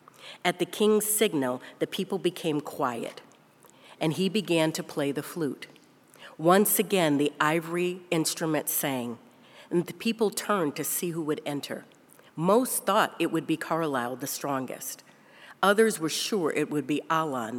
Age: 50-69